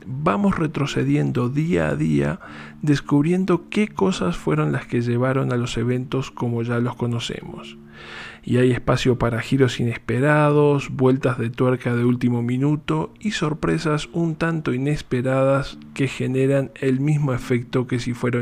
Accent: Argentinian